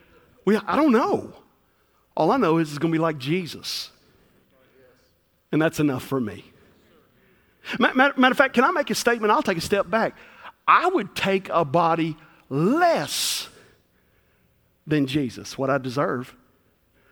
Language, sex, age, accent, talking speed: English, male, 50-69, American, 150 wpm